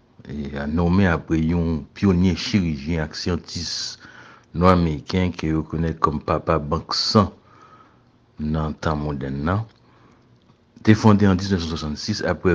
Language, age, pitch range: French, 60-79, 80-100 Hz